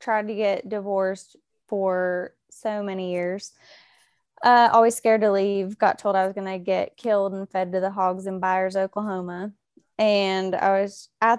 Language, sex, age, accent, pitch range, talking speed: English, female, 20-39, American, 185-220 Hz, 170 wpm